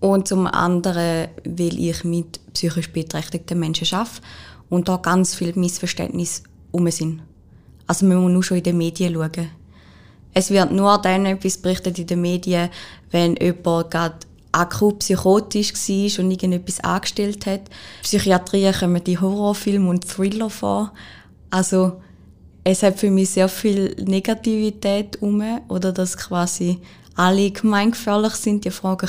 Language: German